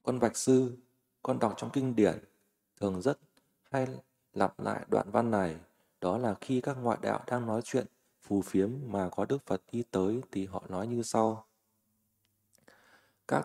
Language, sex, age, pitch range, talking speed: Vietnamese, male, 20-39, 100-125 Hz, 175 wpm